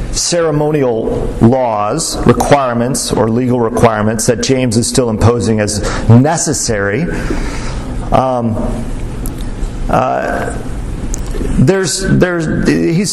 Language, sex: English, male